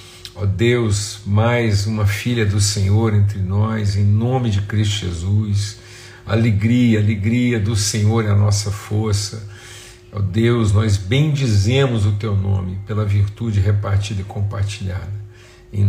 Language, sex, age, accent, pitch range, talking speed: Portuguese, male, 50-69, Brazilian, 100-115 Hz, 130 wpm